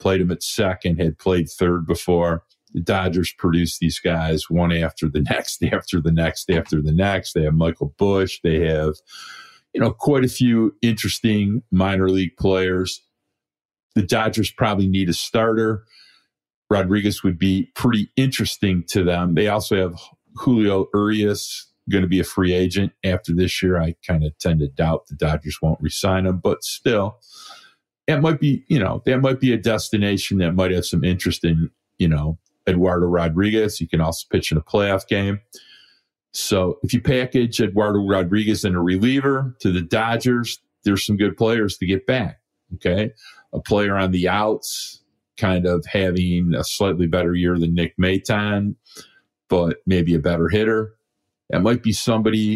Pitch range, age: 85-110 Hz, 50-69